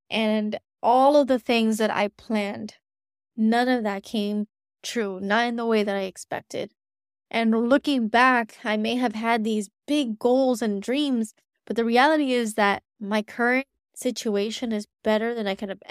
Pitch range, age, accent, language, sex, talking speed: 205-235 Hz, 20-39, American, English, female, 175 wpm